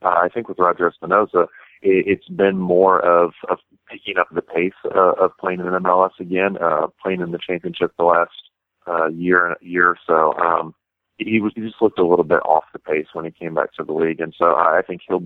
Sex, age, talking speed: male, 40-59, 225 wpm